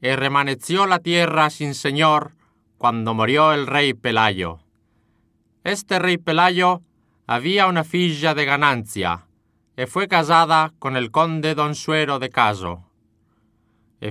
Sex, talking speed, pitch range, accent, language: male, 130 wpm, 110-165 Hz, Spanish, English